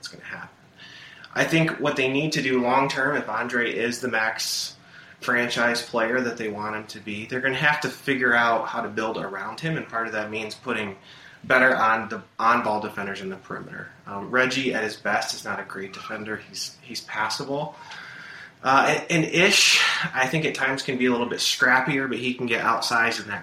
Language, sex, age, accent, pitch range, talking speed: English, male, 20-39, American, 115-140 Hz, 220 wpm